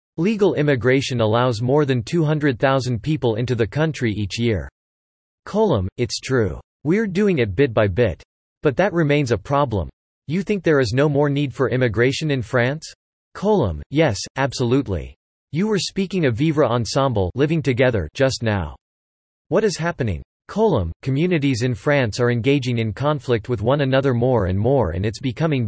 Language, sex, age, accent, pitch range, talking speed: English, male, 40-59, American, 110-150 Hz, 165 wpm